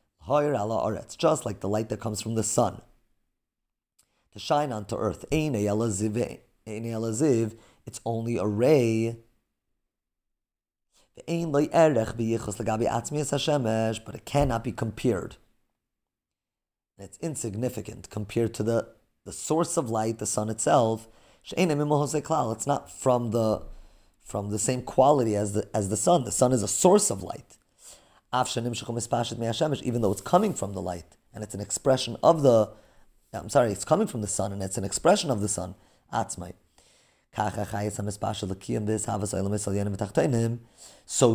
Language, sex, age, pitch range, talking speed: English, male, 30-49, 105-130 Hz, 120 wpm